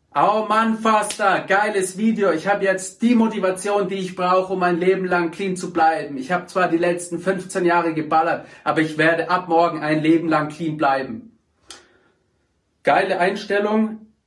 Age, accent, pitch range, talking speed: 40-59, German, 150-190 Hz, 170 wpm